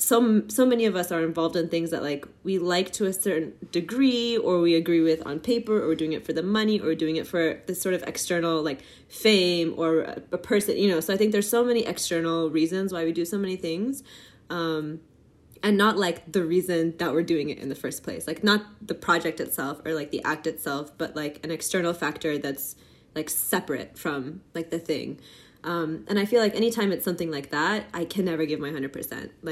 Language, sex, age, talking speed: English, female, 20-39, 230 wpm